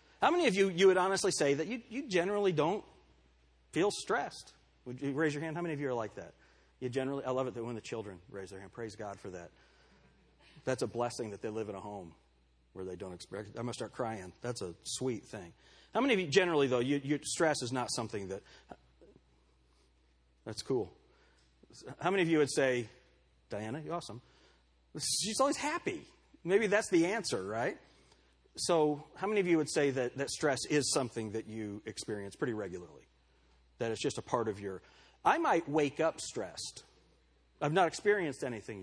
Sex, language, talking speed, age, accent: male, English, 200 wpm, 40-59, American